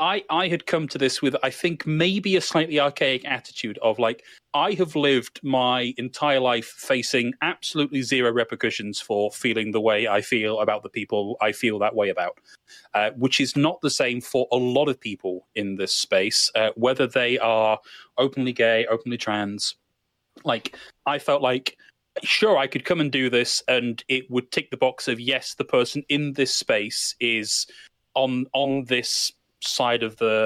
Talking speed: 185 wpm